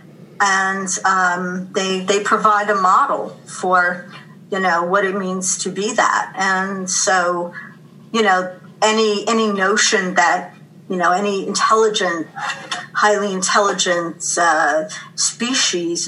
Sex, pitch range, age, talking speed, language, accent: female, 185-220 Hz, 50-69, 120 wpm, English, American